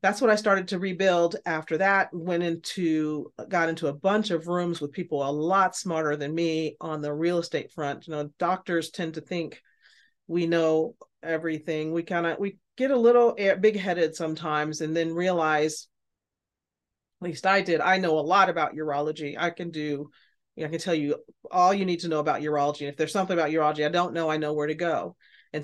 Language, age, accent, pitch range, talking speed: English, 40-59, American, 155-190 Hz, 210 wpm